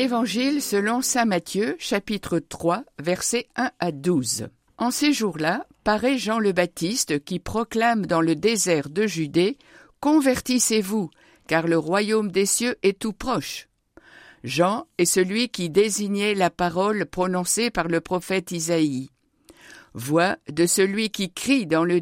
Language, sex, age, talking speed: French, female, 60-79, 140 wpm